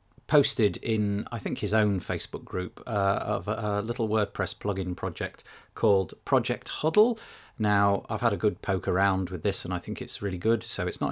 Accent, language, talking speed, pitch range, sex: British, English, 200 wpm, 95-115 Hz, male